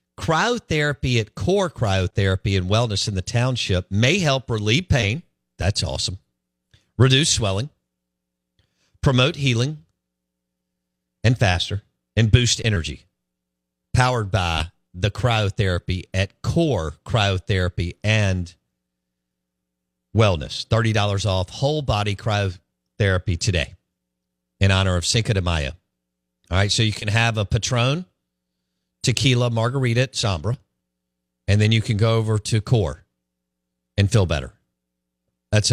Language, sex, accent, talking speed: English, male, American, 115 wpm